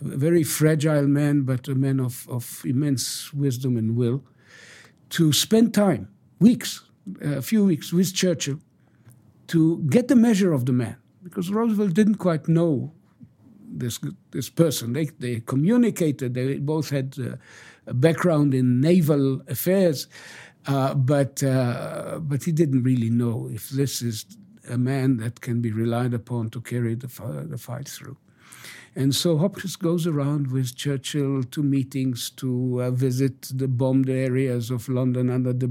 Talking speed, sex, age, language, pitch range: 155 wpm, male, 60-79, English, 125-170 Hz